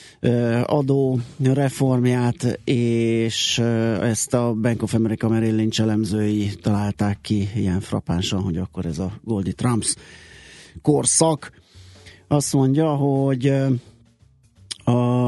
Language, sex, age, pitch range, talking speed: Hungarian, male, 30-49, 105-125 Hz, 95 wpm